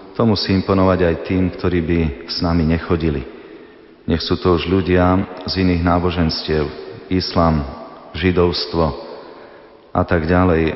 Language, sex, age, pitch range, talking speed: Slovak, male, 30-49, 85-95 Hz, 130 wpm